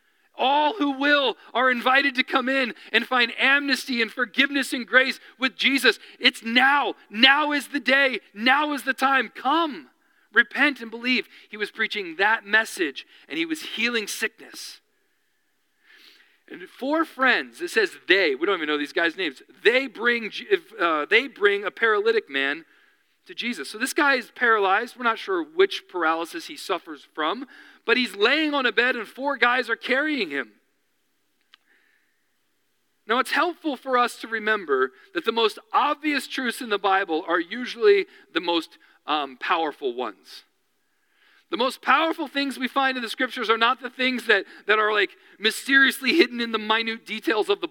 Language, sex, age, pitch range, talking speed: English, male, 40-59, 240-380 Hz, 170 wpm